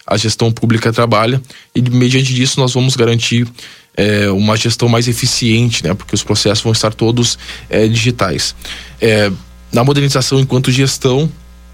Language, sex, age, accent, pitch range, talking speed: Portuguese, male, 20-39, Brazilian, 105-115 Hz, 150 wpm